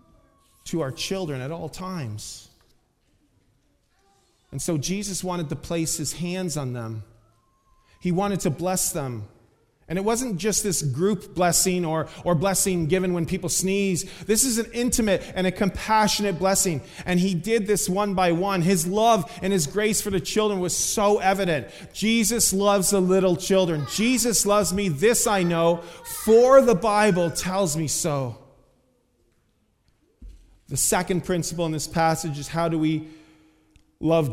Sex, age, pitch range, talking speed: male, 30-49, 150-195 Hz, 155 wpm